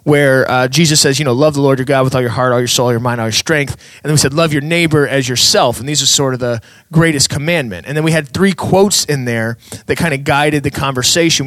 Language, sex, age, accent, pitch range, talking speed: English, male, 20-39, American, 125-160 Hz, 290 wpm